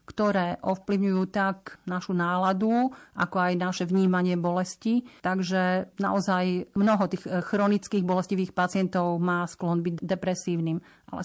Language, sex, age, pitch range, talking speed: Slovak, female, 40-59, 180-200 Hz, 115 wpm